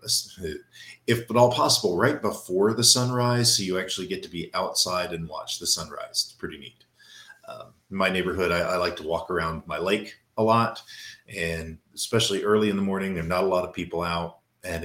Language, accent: English, American